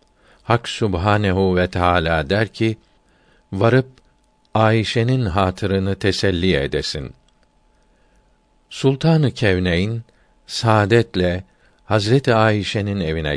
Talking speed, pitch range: 75 wpm, 95-115 Hz